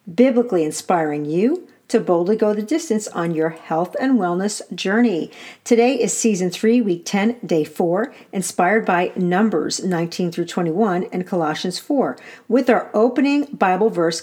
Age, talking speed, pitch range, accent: 50-69, 150 wpm, 170-225 Hz, American